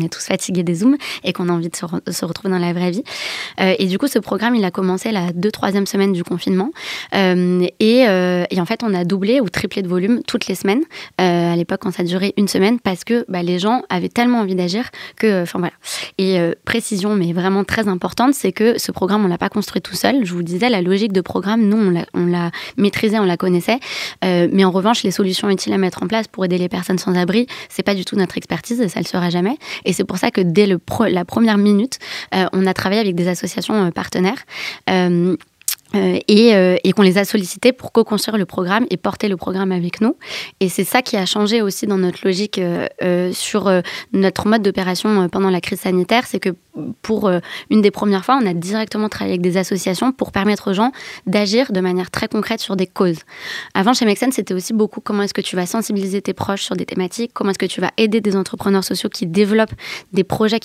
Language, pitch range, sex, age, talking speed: French, 185-220 Hz, female, 20-39, 245 wpm